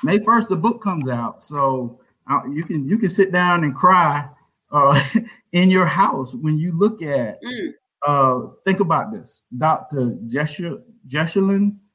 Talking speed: 150 wpm